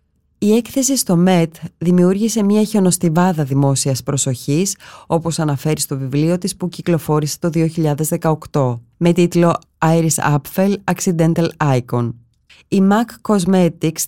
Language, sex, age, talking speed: Greek, female, 20-39, 115 wpm